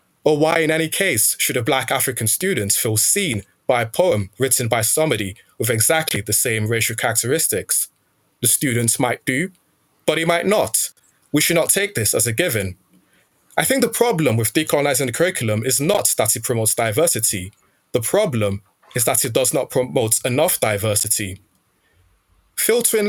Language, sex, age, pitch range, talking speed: English, male, 20-39, 105-150 Hz, 170 wpm